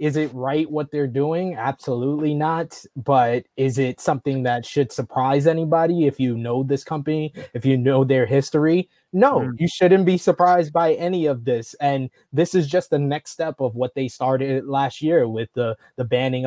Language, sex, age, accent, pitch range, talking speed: English, male, 20-39, American, 130-165 Hz, 190 wpm